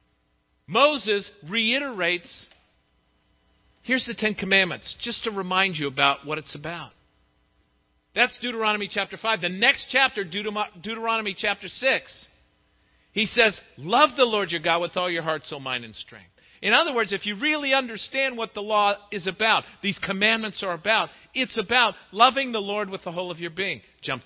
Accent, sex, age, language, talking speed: American, male, 50-69, English, 165 wpm